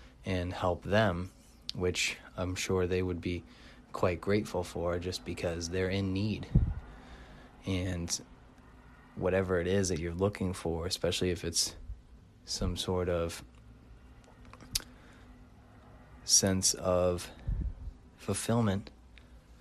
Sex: male